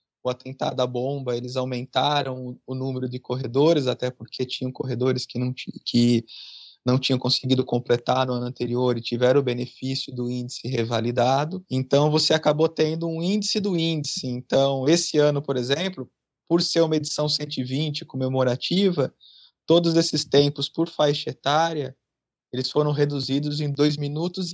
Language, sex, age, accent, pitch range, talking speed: Portuguese, male, 20-39, Brazilian, 130-160 Hz, 150 wpm